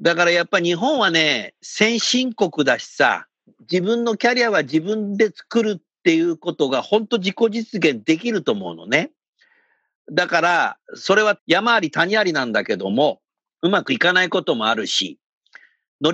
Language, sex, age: Japanese, male, 50-69